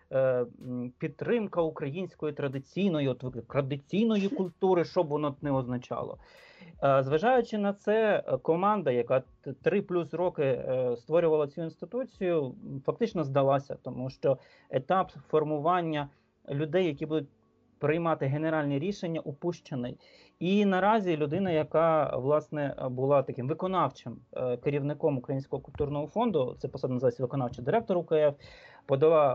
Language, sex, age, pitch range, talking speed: Ukrainian, male, 30-49, 135-175 Hz, 105 wpm